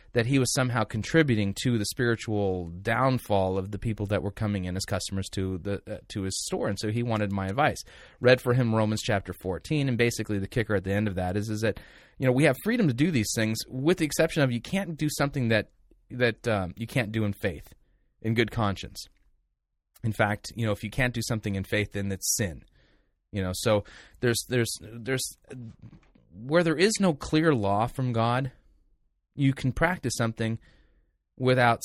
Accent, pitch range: American, 100-130 Hz